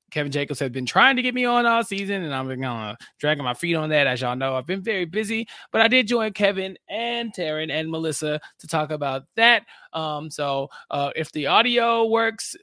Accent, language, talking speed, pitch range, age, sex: American, English, 225 wpm, 130-190 Hz, 20-39, male